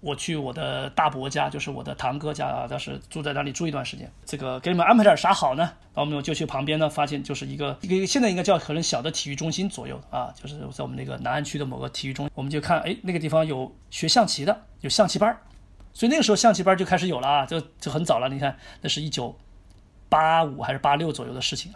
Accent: native